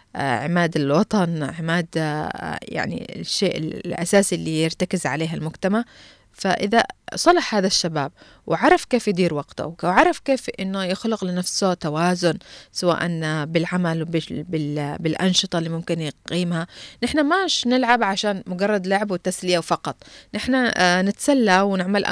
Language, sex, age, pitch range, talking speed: Arabic, female, 20-39, 165-215 Hz, 110 wpm